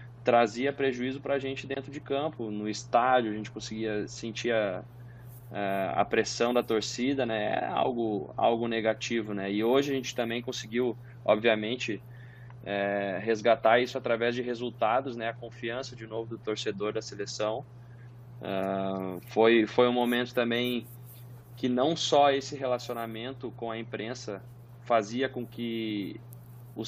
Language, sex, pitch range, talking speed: Portuguese, male, 110-125 Hz, 145 wpm